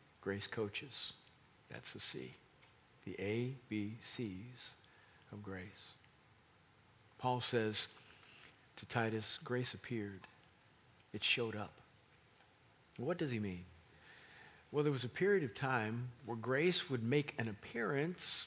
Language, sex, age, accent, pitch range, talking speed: English, male, 50-69, American, 115-140 Hz, 120 wpm